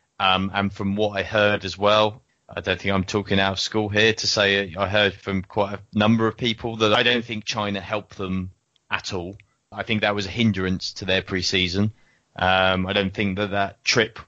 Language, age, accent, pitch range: English, 20-39, British, 95-110 Hz